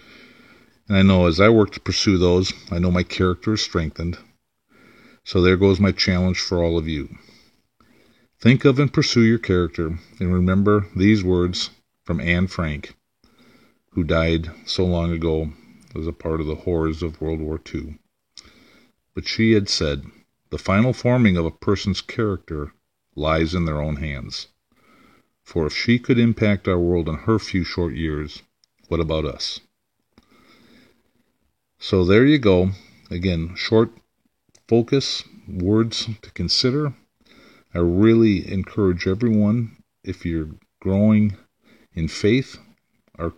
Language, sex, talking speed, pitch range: English, male, 140 wpm, 85-105 Hz